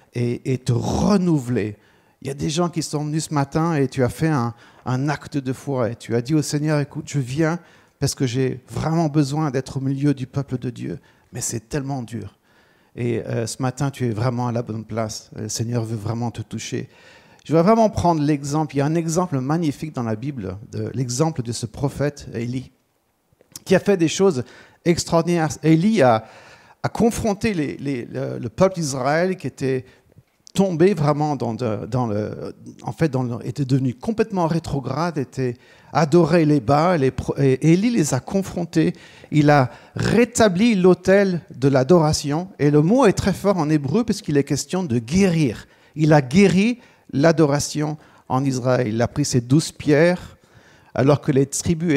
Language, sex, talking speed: French, male, 185 wpm